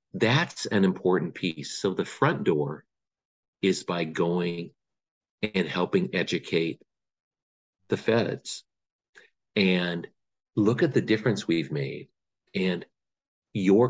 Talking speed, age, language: 110 wpm, 50-69, English